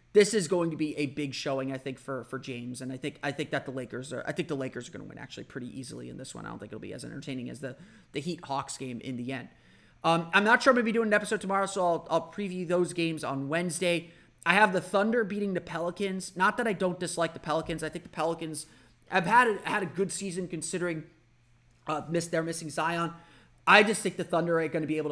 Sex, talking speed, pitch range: male, 270 wpm, 140-170 Hz